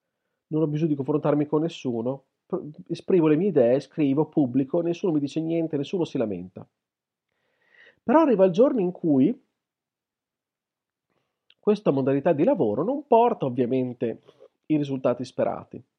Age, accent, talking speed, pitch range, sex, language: 40-59, native, 135 wpm, 135-195 Hz, male, Italian